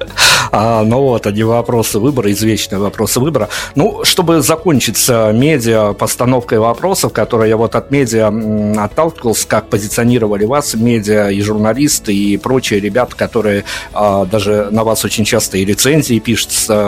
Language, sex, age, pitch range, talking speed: Russian, male, 50-69, 105-125 Hz, 145 wpm